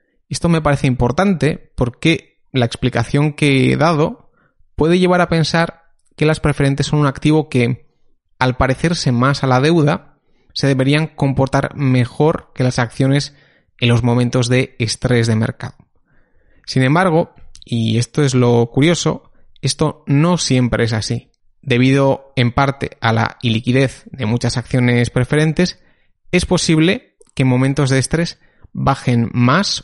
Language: Spanish